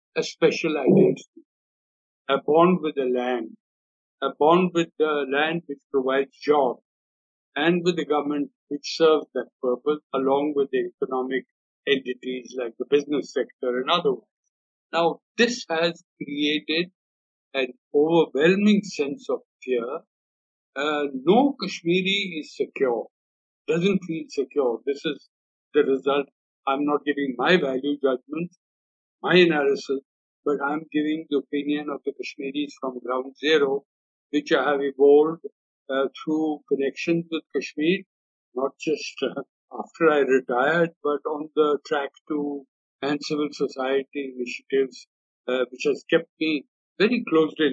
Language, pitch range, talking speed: English, 135-170 Hz, 135 wpm